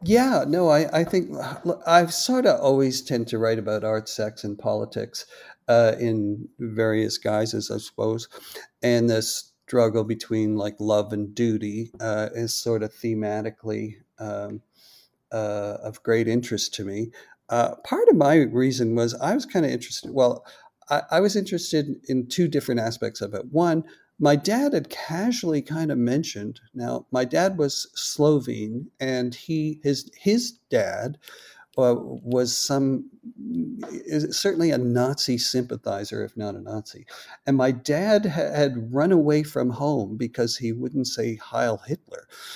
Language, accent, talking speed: English, American, 150 wpm